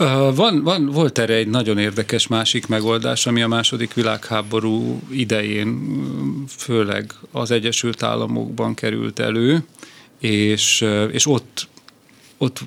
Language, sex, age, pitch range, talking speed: Hungarian, male, 40-59, 105-120 Hz, 110 wpm